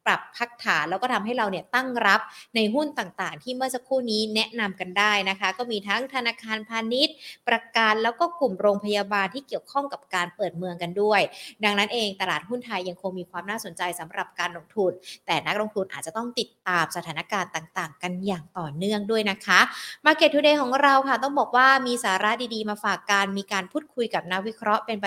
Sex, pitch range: female, 190-250 Hz